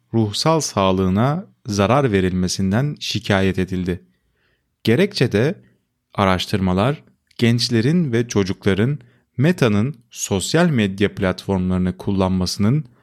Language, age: Turkish, 30-49